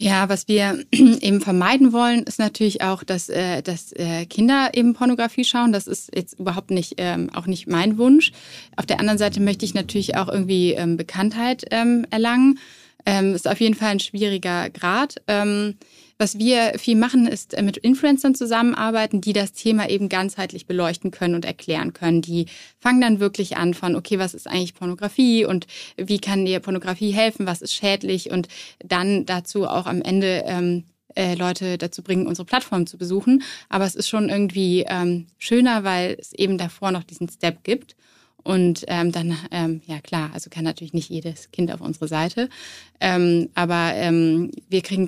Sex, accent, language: female, German, German